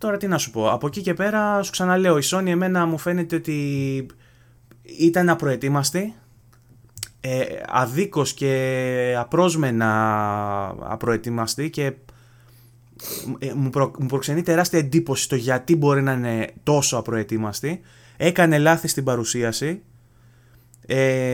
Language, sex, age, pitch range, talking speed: Greek, male, 20-39, 120-145 Hz, 125 wpm